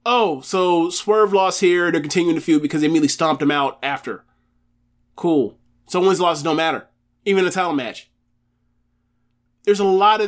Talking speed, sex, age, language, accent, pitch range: 170 wpm, male, 20-39, English, American, 145-185 Hz